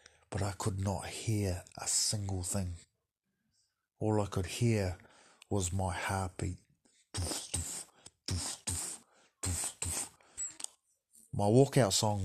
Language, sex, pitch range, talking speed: English, male, 90-105 Hz, 90 wpm